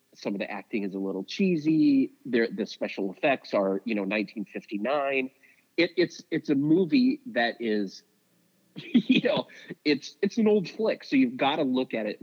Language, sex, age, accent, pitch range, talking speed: English, male, 30-49, American, 110-150 Hz, 175 wpm